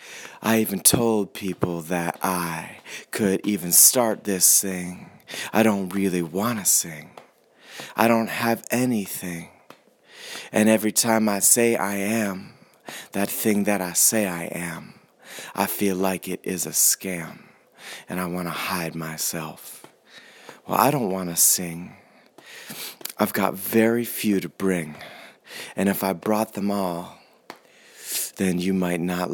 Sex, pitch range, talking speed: male, 90-105 Hz, 145 wpm